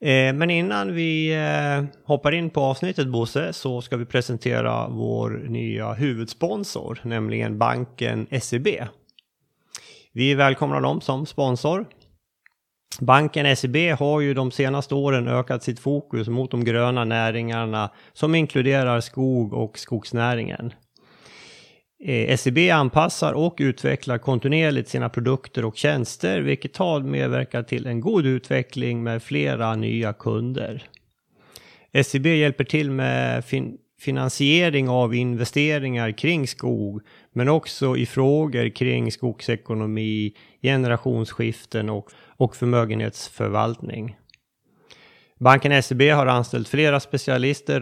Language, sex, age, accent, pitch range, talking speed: Swedish, male, 30-49, native, 115-140 Hz, 110 wpm